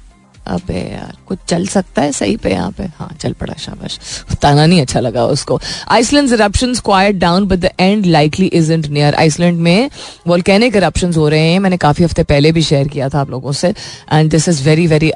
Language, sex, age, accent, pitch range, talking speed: Hindi, female, 30-49, native, 150-185 Hz, 200 wpm